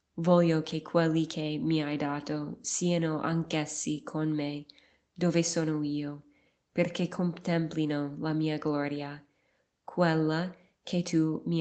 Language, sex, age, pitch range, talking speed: Italian, female, 20-39, 145-170 Hz, 120 wpm